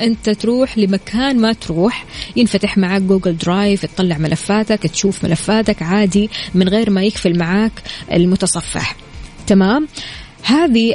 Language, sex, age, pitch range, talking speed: Arabic, female, 20-39, 185-230 Hz, 120 wpm